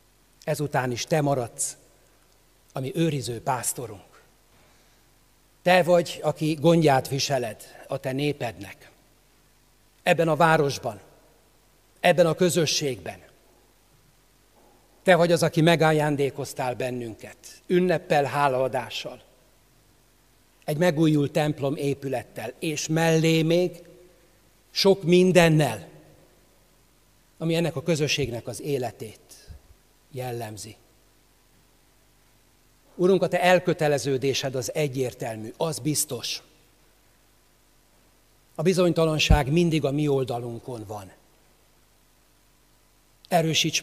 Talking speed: 85 wpm